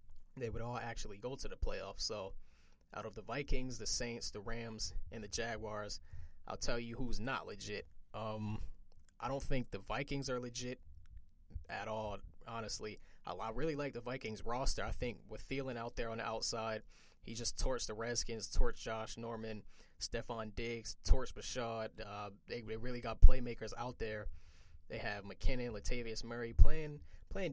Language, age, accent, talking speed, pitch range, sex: English, 20-39, American, 170 wpm, 100-120 Hz, male